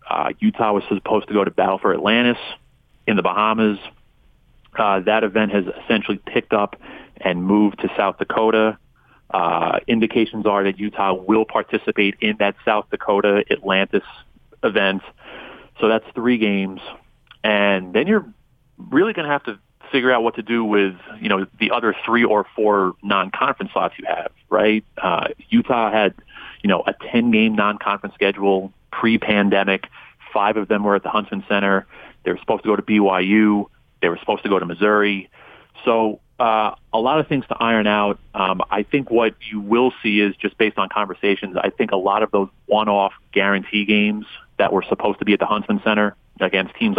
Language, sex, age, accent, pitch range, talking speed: English, male, 30-49, American, 100-110 Hz, 180 wpm